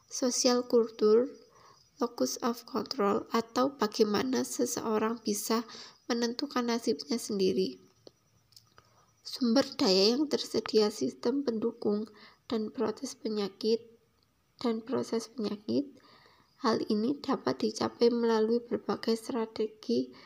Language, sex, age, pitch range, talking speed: Indonesian, female, 20-39, 215-245 Hz, 90 wpm